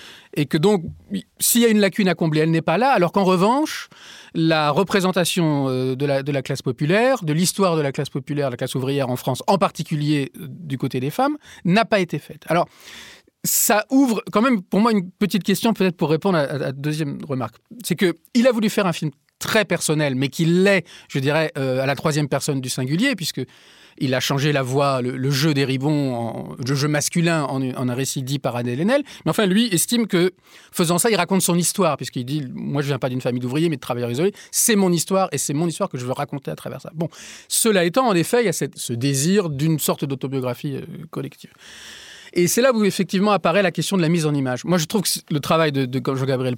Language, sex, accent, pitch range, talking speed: French, male, French, 135-185 Hz, 235 wpm